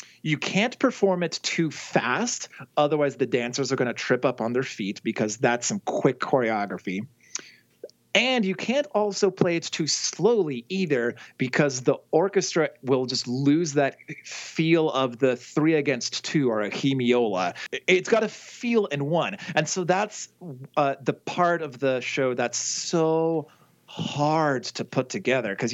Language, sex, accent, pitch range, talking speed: English, male, American, 120-165 Hz, 160 wpm